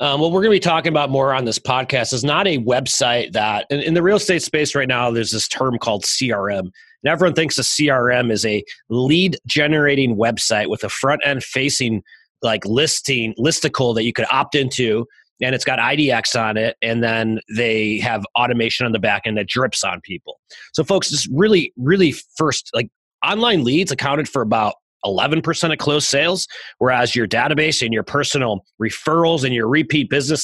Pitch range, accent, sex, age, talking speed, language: 120-155 Hz, American, male, 30-49, 195 wpm, English